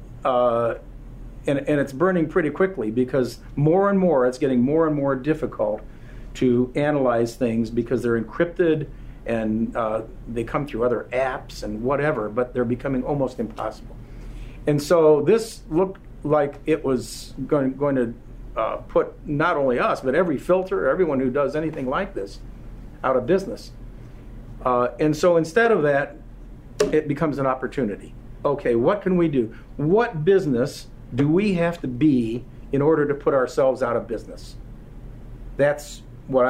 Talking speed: 160 wpm